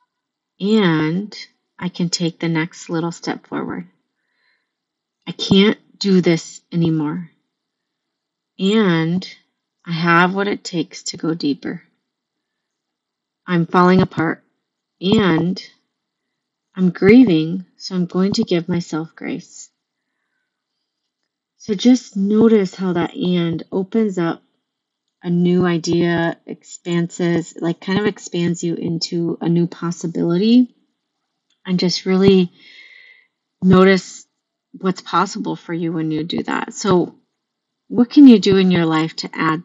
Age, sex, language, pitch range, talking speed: 30-49, female, English, 170-210 Hz, 120 wpm